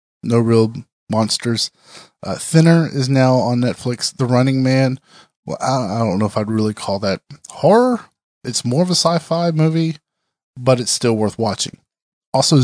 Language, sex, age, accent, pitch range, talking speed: English, male, 20-39, American, 110-140 Hz, 165 wpm